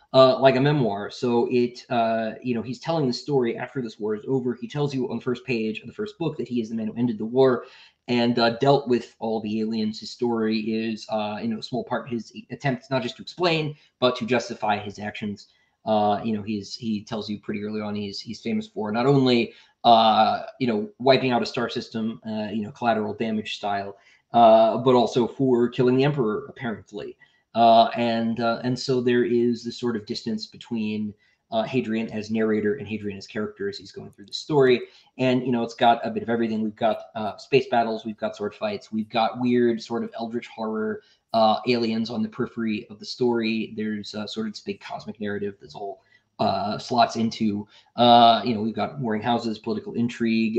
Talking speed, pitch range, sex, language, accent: 215 wpm, 110-125 Hz, male, English, American